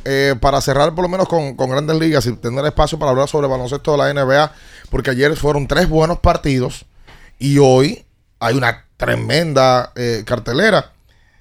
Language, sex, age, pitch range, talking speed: Spanish, male, 30-49, 120-145 Hz, 180 wpm